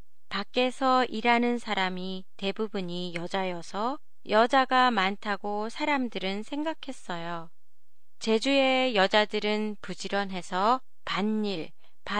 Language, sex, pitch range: Japanese, female, 190-260 Hz